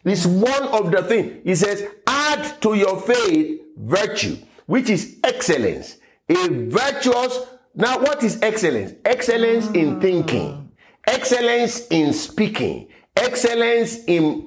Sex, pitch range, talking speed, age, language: male, 185-255 Hz, 120 wpm, 50-69, English